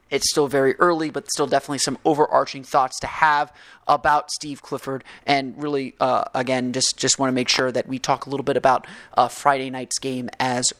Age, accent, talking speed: 30-49, American, 205 wpm